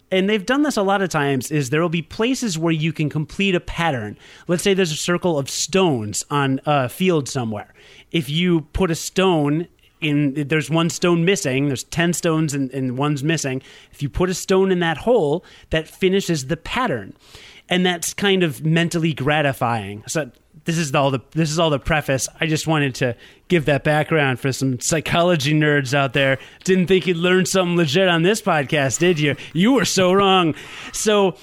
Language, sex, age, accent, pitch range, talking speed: English, male, 30-49, American, 145-185 Hz, 200 wpm